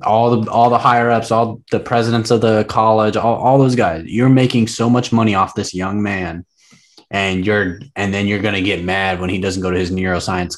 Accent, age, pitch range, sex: American, 20-39, 95-115 Hz, male